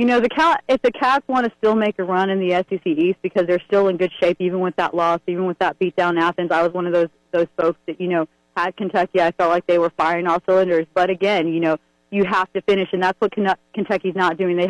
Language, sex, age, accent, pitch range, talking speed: English, female, 30-49, American, 180-205 Hz, 280 wpm